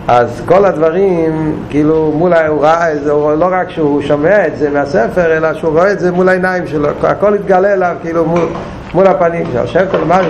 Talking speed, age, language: 190 wpm, 60-79, Hebrew